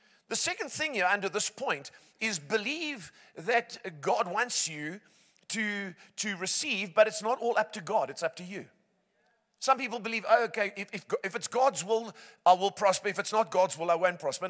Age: 50-69